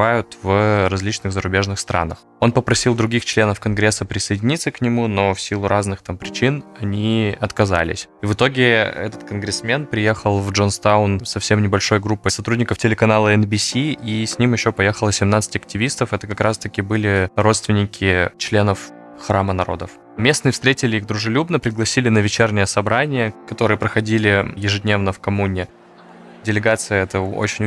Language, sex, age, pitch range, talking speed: Russian, male, 20-39, 100-115 Hz, 140 wpm